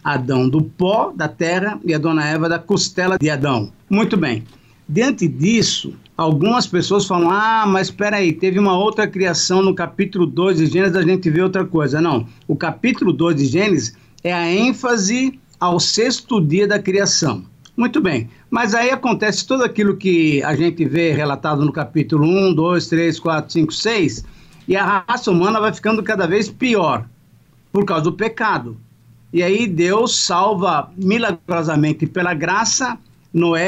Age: 50-69